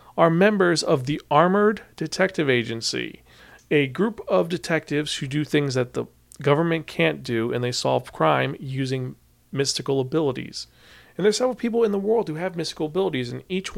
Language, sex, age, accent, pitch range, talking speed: English, male, 40-59, American, 125-160 Hz, 170 wpm